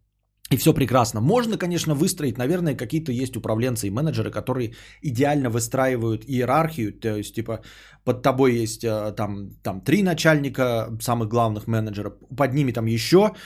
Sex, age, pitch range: male, 20-39, 115-155 Hz